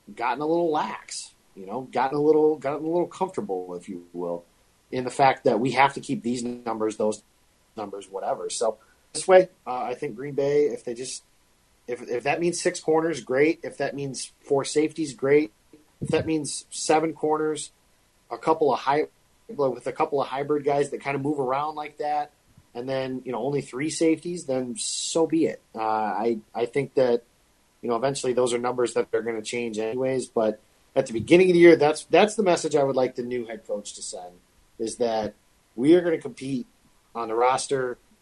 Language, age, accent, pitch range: English, 30-49, American, 115-150 Hz